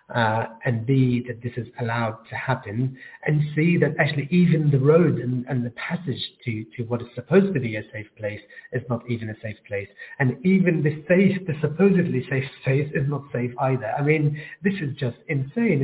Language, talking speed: English, 205 wpm